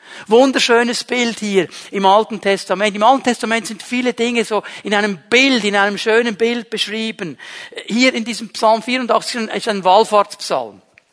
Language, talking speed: German, 155 wpm